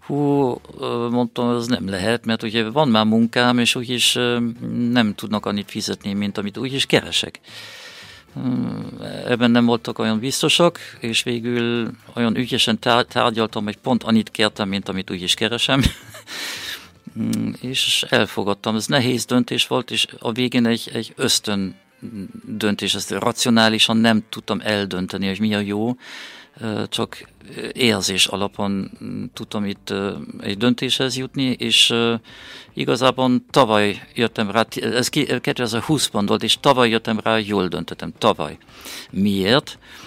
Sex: male